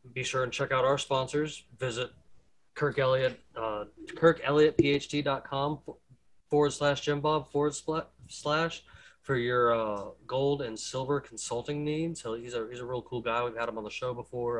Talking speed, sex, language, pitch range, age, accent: 165 wpm, male, English, 115-135 Hz, 20-39, American